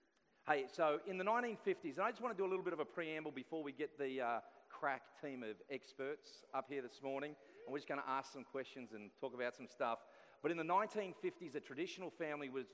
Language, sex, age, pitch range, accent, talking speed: English, male, 40-59, 125-155 Hz, Australian, 240 wpm